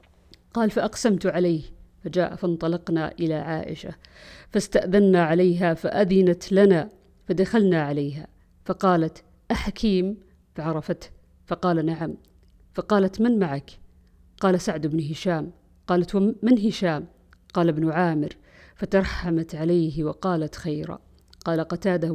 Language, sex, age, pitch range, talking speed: Arabic, female, 50-69, 165-205 Hz, 100 wpm